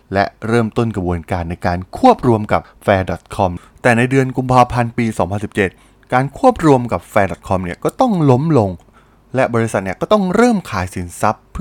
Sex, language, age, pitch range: male, Thai, 20-39, 100-155 Hz